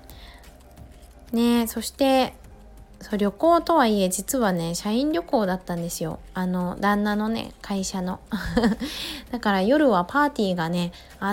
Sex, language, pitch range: female, Japanese, 185-245 Hz